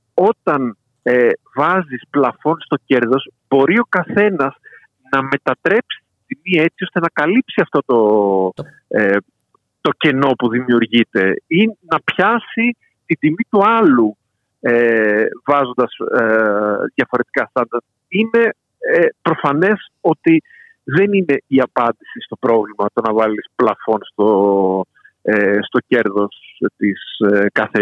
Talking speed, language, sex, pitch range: 155 wpm, Greek, male, 110-185 Hz